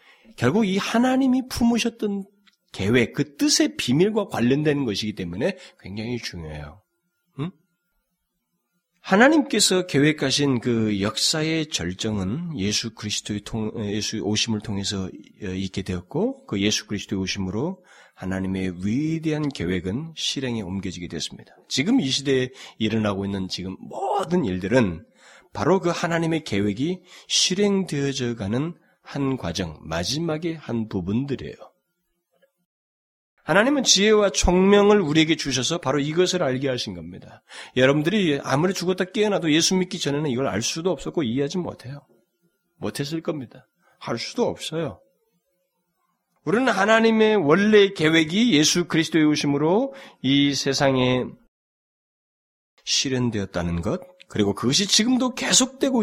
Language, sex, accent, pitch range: Korean, male, native, 110-180 Hz